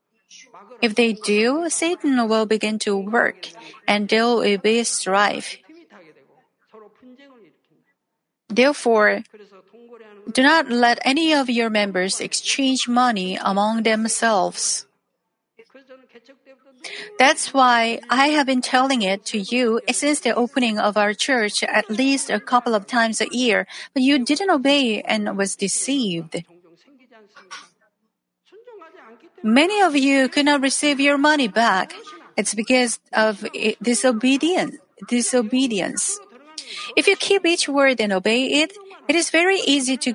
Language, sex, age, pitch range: Korean, female, 40-59, 215-275 Hz